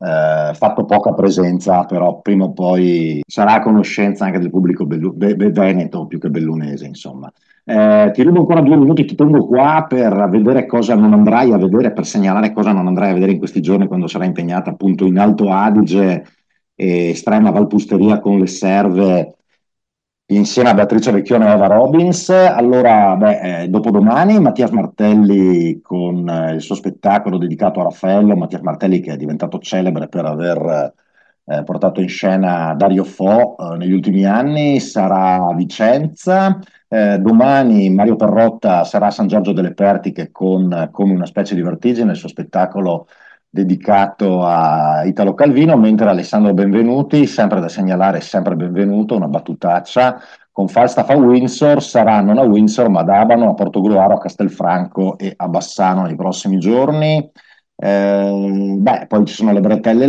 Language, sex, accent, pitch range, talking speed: Italian, male, native, 95-120 Hz, 165 wpm